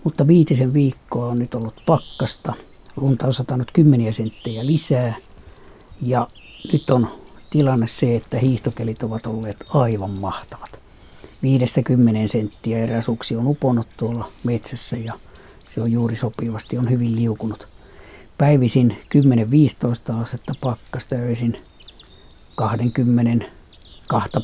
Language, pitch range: Finnish, 115-130 Hz